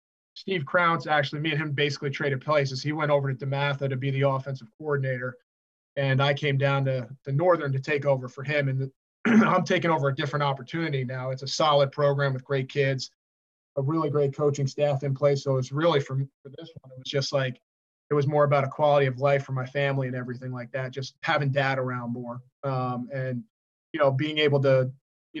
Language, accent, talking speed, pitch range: English, American, 220 wpm, 130-145 Hz